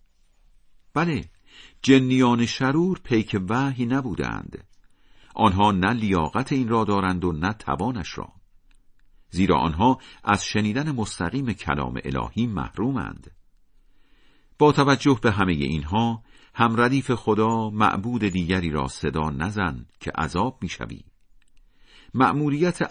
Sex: male